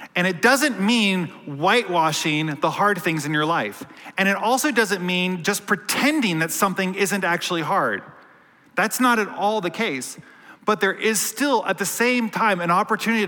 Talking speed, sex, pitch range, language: 175 wpm, male, 150-215 Hz, English